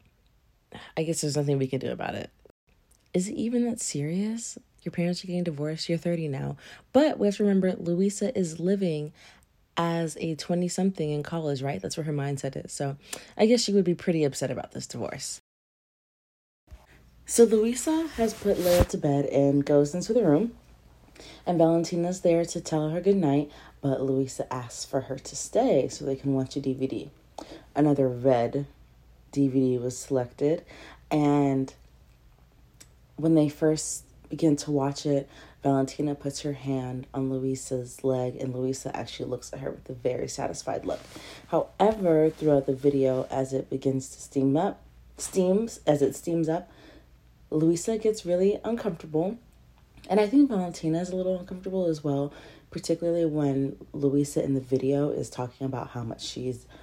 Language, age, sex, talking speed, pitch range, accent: English, 30-49, female, 165 wpm, 135-180 Hz, American